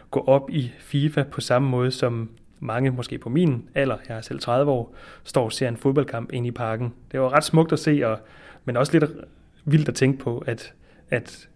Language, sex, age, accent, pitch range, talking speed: Danish, male, 30-49, native, 115-140 Hz, 220 wpm